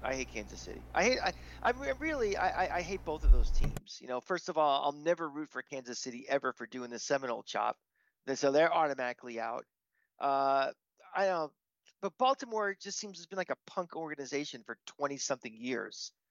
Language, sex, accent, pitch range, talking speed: English, male, American, 130-180 Hz, 200 wpm